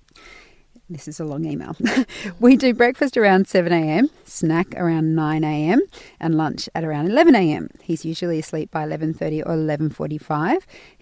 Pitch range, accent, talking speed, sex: 155-185 Hz, Australian, 135 wpm, female